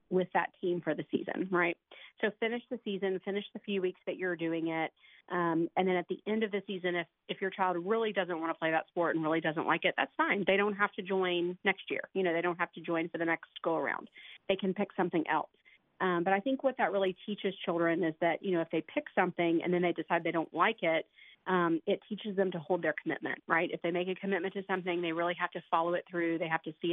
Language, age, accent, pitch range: English, 40-59, American, 170-195 Hz